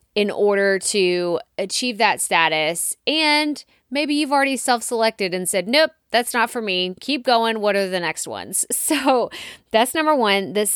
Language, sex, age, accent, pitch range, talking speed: English, female, 20-39, American, 195-255 Hz, 165 wpm